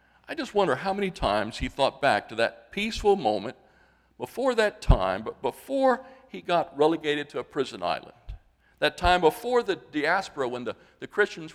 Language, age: English, 60-79